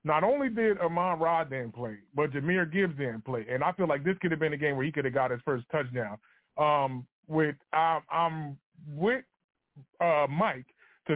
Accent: American